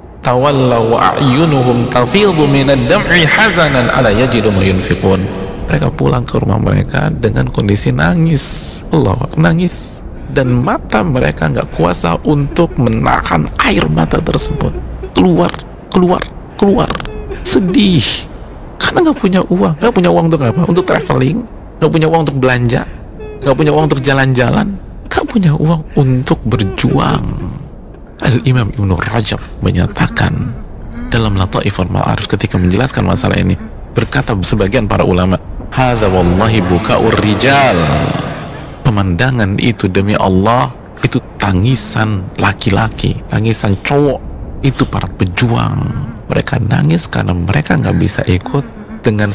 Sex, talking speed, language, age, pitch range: male, 110 wpm, Indonesian, 50-69, 100-140 Hz